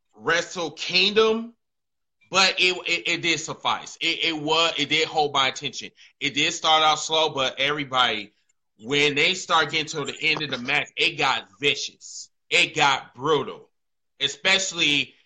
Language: English